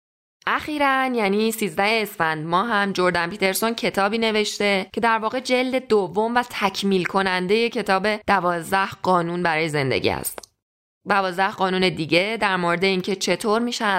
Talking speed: 135 wpm